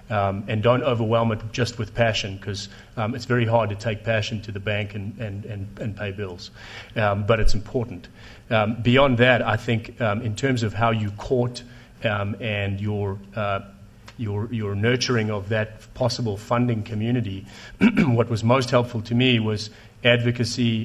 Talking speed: 175 wpm